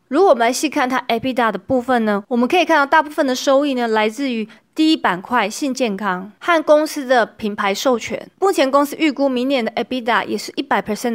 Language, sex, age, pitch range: Chinese, female, 20-39, 215-285 Hz